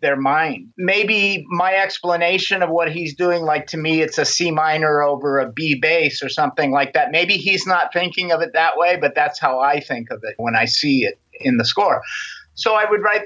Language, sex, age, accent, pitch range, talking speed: English, male, 50-69, American, 145-195 Hz, 225 wpm